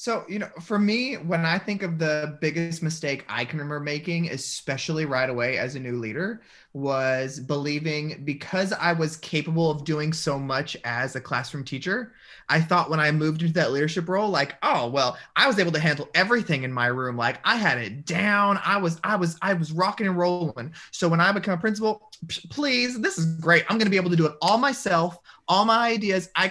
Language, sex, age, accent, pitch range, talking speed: English, male, 30-49, American, 145-185 Hz, 215 wpm